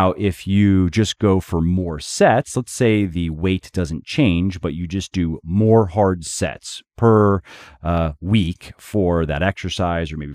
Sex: male